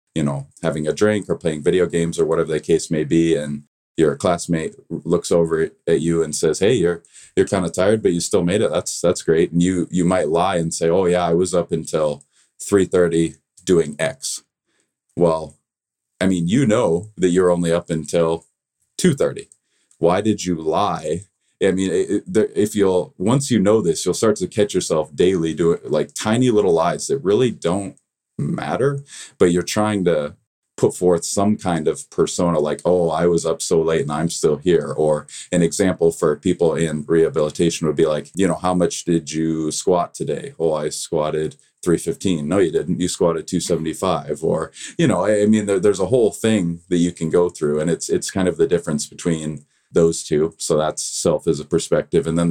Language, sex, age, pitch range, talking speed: English, male, 30-49, 80-95 Hz, 200 wpm